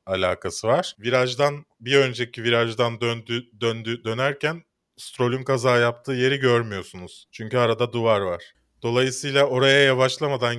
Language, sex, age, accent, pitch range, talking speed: Turkish, male, 30-49, native, 105-140 Hz, 120 wpm